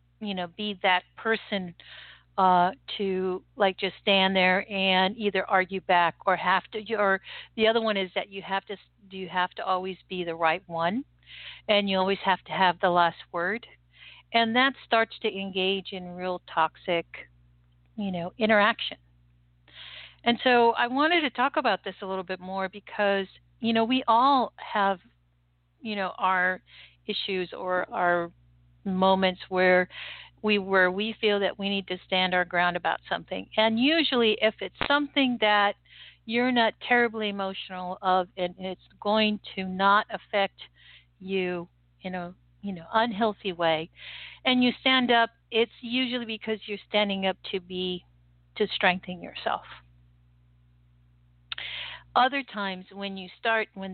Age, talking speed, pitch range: 50-69, 155 wpm, 180-210 Hz